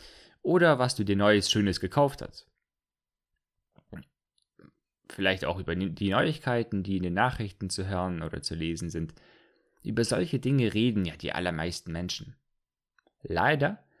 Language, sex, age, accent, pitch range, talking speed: German, male, 20-39, German, 90-125 Hz, 135 wpm